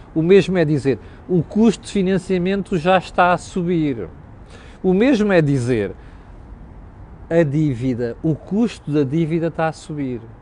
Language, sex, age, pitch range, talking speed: Portuguese, male, 50-69, 115-185 Hz, 145 wpm